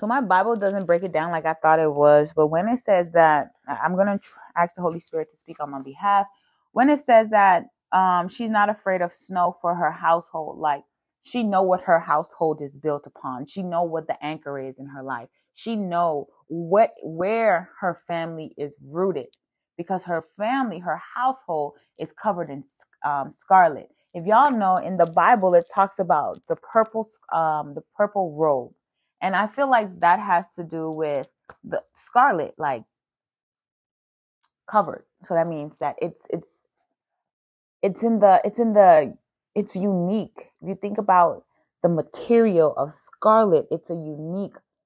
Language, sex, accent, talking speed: English, female, American, 175 wpm